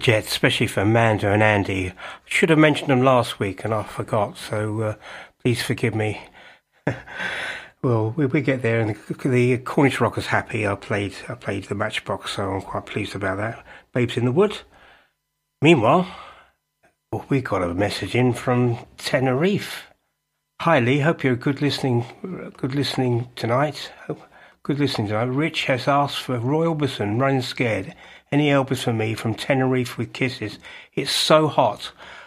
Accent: British